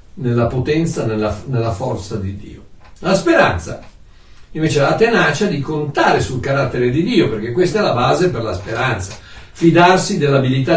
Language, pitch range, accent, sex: Italian, 115-160 Hz, native, male